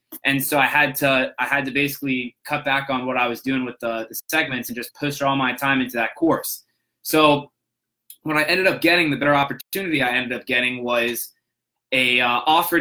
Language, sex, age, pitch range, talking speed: English, male, 20-39, 130-150 Hz, 215 wpm